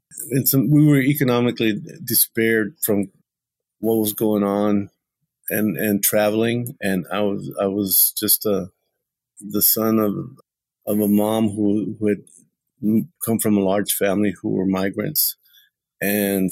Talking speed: 140 wpm